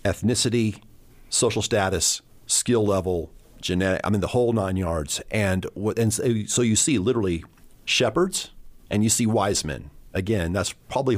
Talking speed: 145 wpm